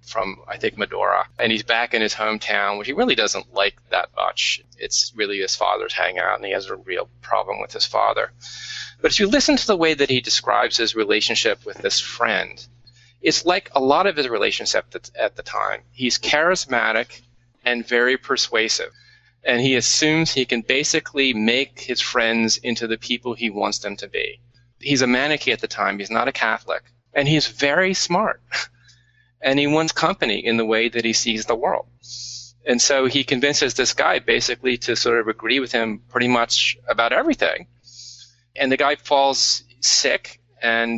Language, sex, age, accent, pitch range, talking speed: English, male, 30-49, American, 115-135 Hz, 185 wpm